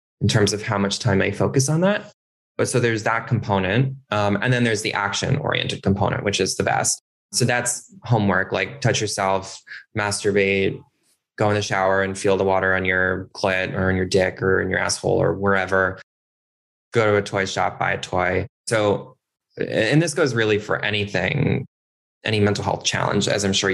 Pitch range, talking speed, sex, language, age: 95-115 Hz, 190 wpm, male, English, 20-39